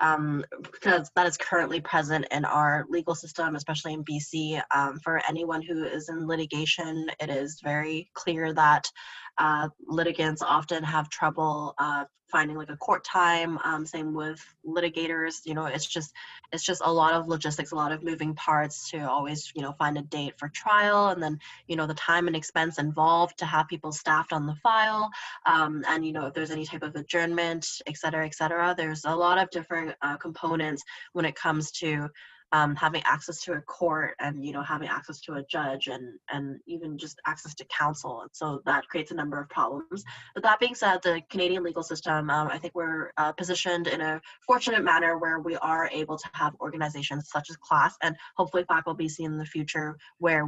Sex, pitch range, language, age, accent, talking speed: female, 150-170 Hz, English, 20-39, American, 205 wpm